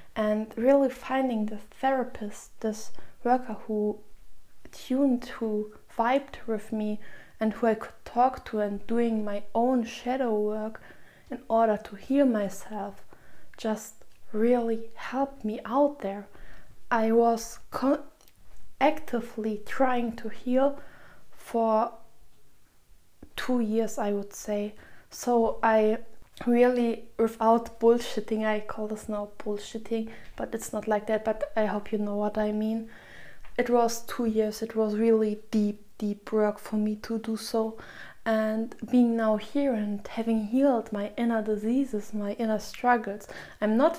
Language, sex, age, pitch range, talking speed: German, female, 20-39, 215-245 Hz, 140 wpm